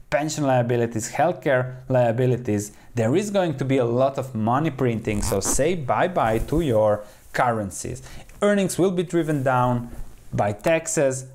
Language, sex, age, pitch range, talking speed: English, male, 30-49, 115-155 Hz, 150 wpm